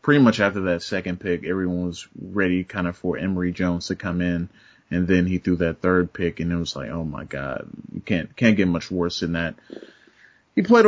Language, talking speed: English, 225 wpm